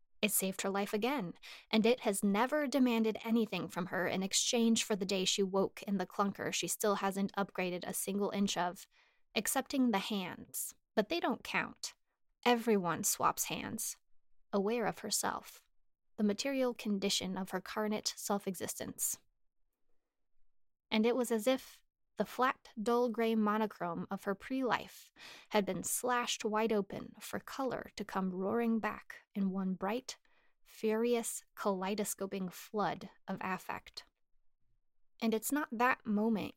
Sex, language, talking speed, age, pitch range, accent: female, English, 145 wpm, 20-39, 195-235 Hz, American